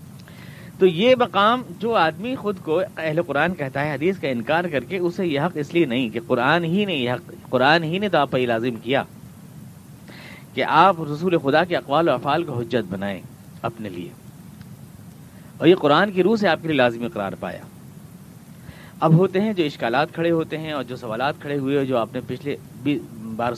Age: 40-59